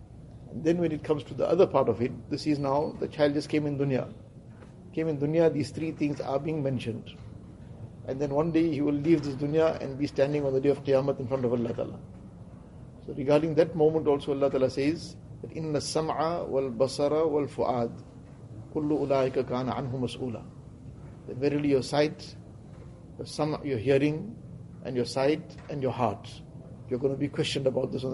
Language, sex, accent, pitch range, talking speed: English, male, Indian, 130-155 Hz, 185 wpm